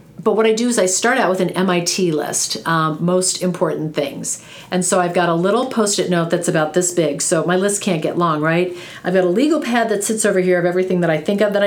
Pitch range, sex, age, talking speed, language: 160-200 Hz, female, 40-59, 260 wpm, English